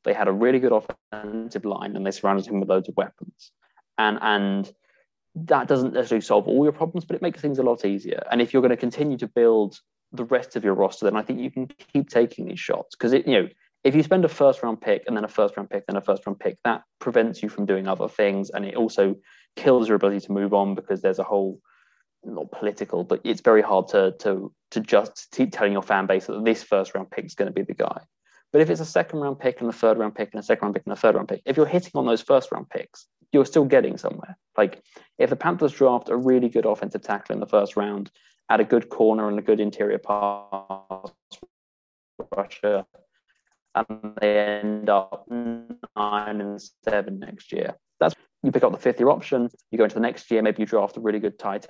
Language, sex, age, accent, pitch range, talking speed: English, male, 20-39, British, 100-140 Hz, 235 wpm